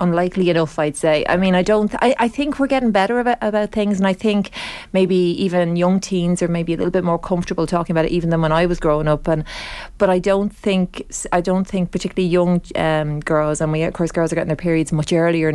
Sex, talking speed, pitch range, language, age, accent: female, 250 wpm, 160-180 Hz, English, 30-49, Irish